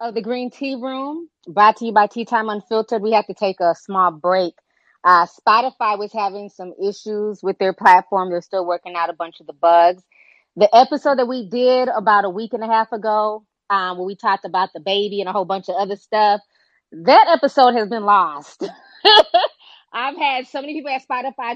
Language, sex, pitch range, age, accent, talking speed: English, female, 180-225 Hz, 20-39, American, 205 wpm